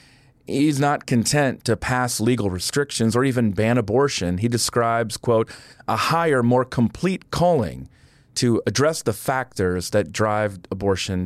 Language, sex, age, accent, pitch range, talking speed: English, male, 40-59, American, 115-140 Hz, 140 wpm